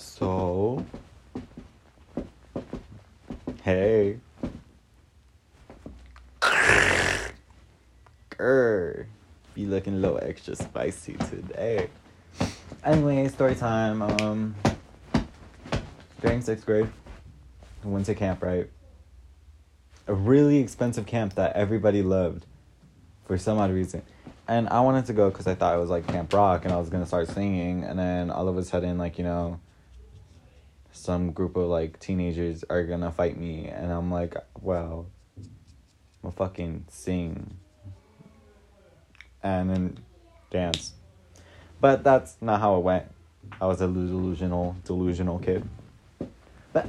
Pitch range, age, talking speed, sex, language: 85-110 Hz, 20-39, 120 wpm, male, English